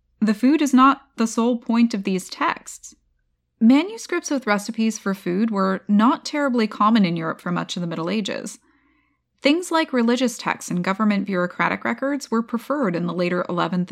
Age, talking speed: 20-39, 175 wpm